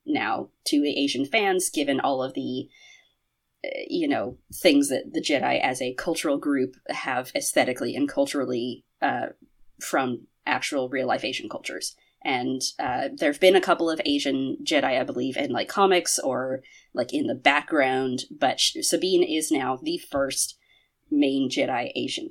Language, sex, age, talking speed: English, female, 30-49, 160 wpm